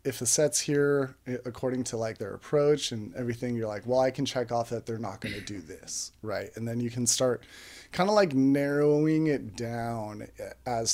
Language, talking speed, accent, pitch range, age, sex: English, 210 wpm, American, 115-140 Hz, 20-39, male